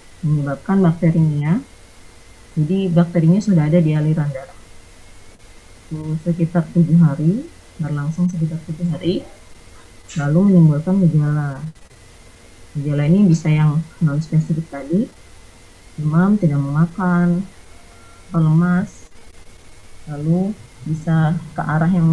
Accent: native